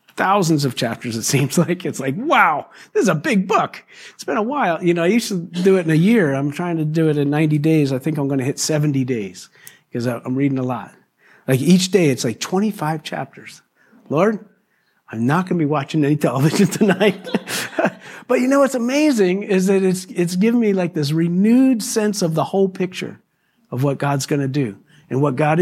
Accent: American